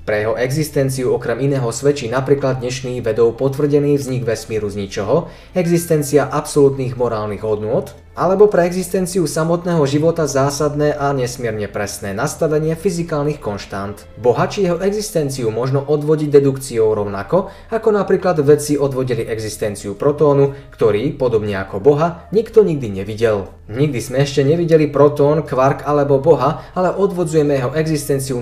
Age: 20-39